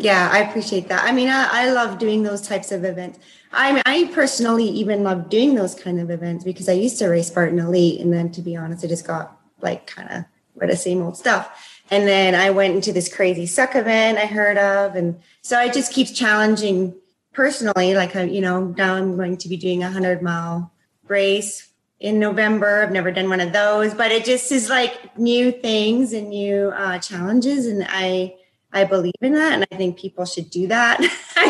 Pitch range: 180-225 Hz